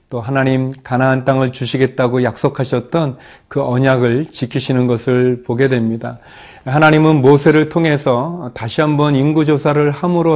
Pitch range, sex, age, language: 120-150 Hz, male, 40-59, Korean